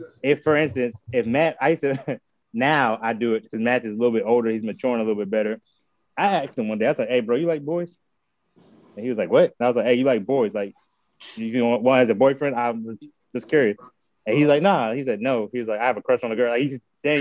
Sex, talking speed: male, 290 wpm